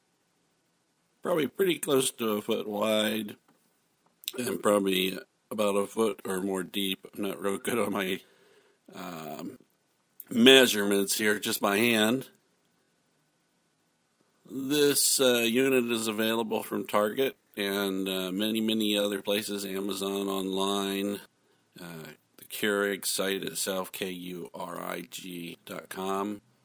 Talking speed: 110 wpm